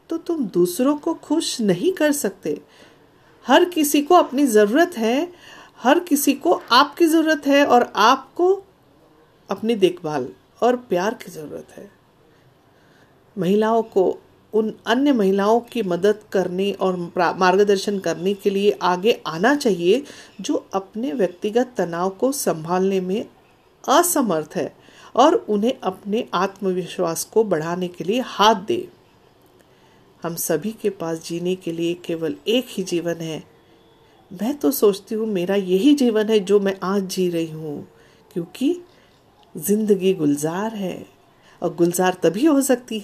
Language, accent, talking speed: Hindi, native, 140 wpm